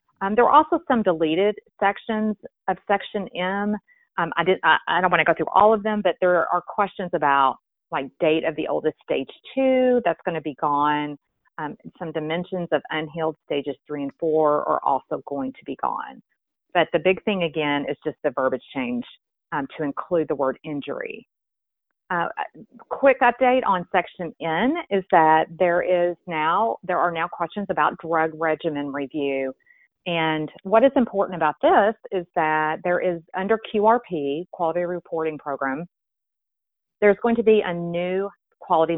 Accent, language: American, English